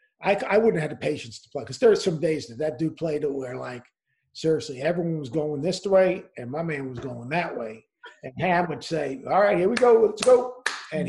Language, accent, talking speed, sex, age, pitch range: English, American, 245 wpm, male, 50-69, 150-210 Hz